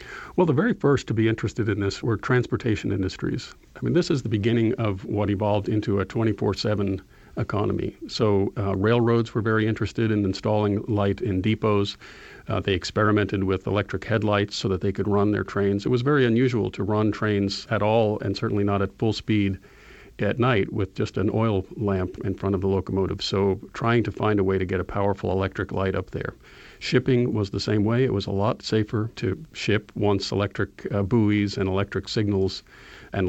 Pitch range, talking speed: 100-115 Hz, 200 wpm